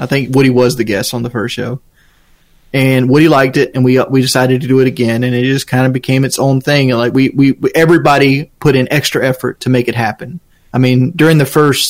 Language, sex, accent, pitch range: English, male, American, 120-140 Hz